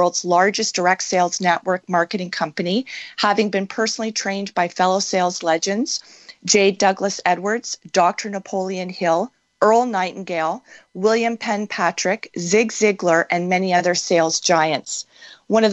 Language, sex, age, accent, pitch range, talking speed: English, female, 40-59, American, 180-220 Hz, 135 wpm